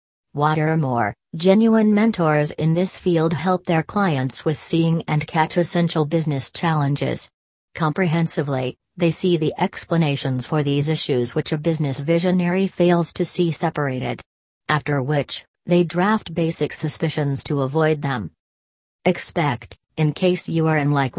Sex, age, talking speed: female, 40-59, 135 wpm